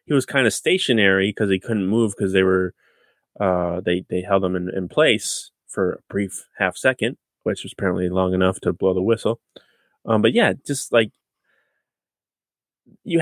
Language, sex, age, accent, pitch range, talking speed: English, male, 20-39, American, 95-115 Hz, 180 wpm